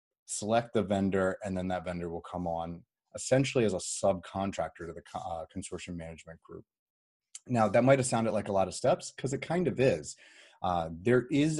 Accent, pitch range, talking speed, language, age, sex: American, 85-110 Hz, 195 wpm, English, 30-49, male